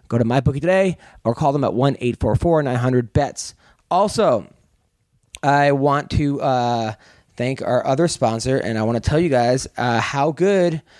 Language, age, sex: English, 30-49, male